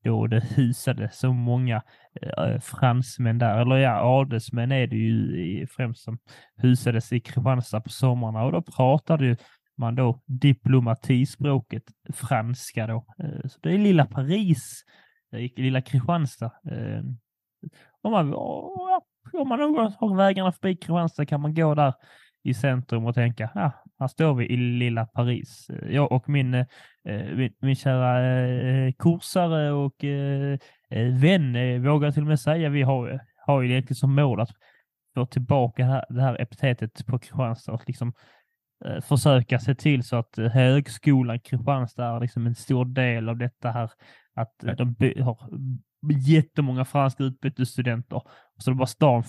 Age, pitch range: 20-39, 120-140 Hz